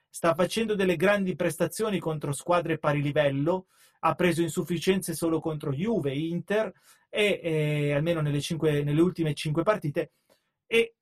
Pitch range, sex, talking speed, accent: 145-175 Hz, male, 145 wpm, native